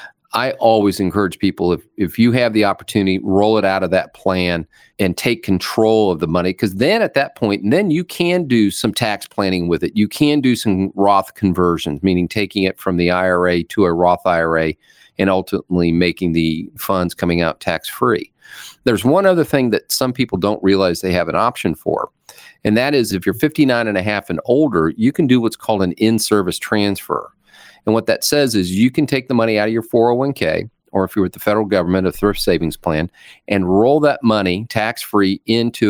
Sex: male